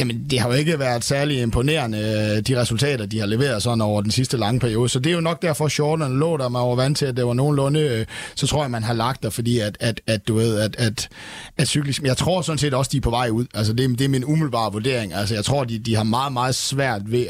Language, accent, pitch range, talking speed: Danish, native, 115-140 Hz, 280 wpm